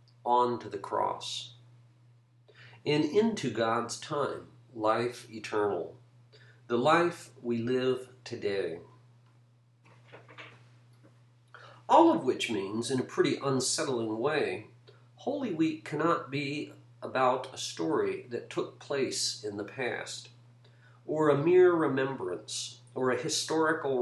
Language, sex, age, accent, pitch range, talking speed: English, male, 50-69, American, 120-155 Hz, 110 wpm